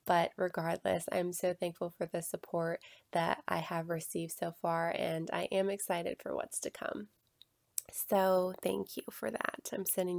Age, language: 20-39, English